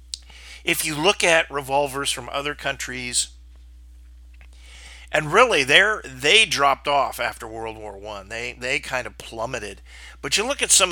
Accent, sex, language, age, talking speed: American, male, English, 50-69, 155 wpm